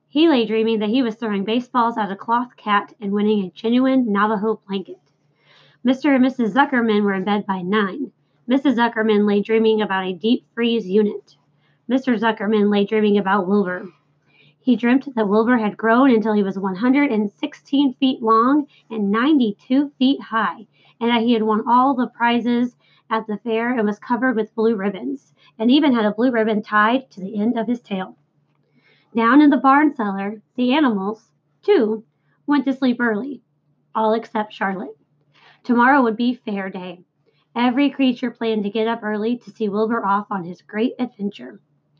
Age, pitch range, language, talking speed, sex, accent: 30-49, 200-245 Hz, English, 175 wpm, female, American